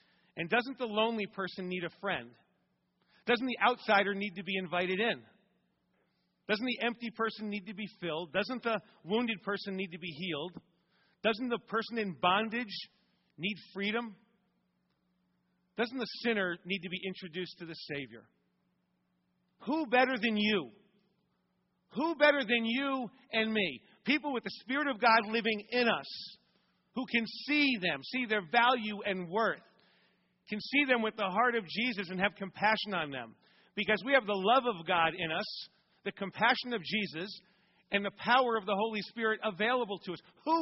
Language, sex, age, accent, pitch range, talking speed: English, male, 40-59, American, 185-235 Hz, 170 wpm